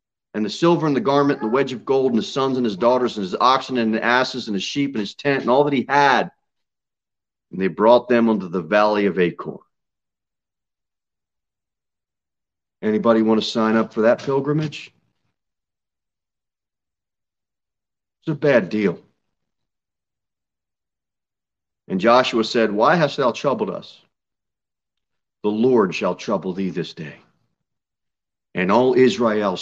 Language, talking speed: English, 150 wpm